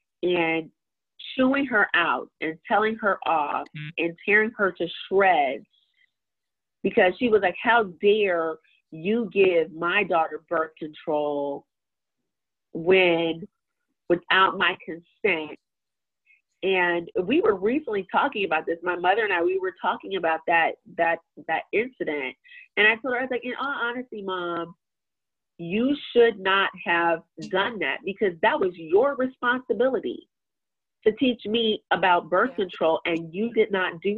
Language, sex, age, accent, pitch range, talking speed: English, female, 30-49, American, 170-240 Hz, 140 wpm